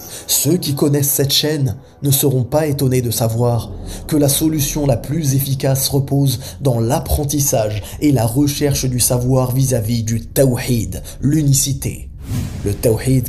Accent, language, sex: French, French, male